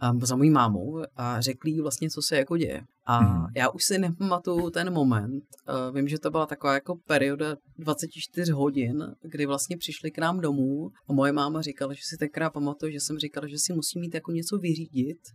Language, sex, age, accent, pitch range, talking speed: Czech, female, 30-49, native, 140-160 Hz, 200 wpm